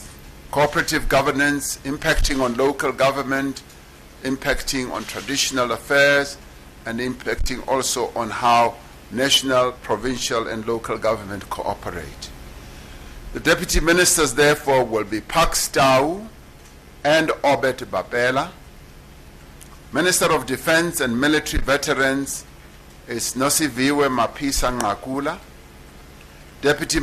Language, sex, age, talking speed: English, male, 60-79, 95 wpm